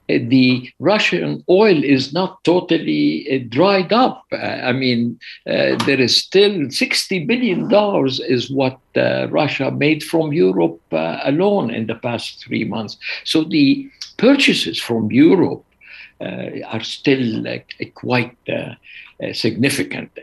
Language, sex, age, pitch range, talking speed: English, male, 60-79, 120-165 Hz, 135 wpm